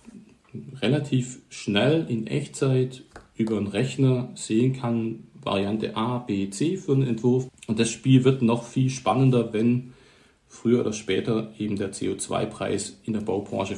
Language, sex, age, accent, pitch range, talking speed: German, male, 40-59, German, 105-130 Hz, 145 wpm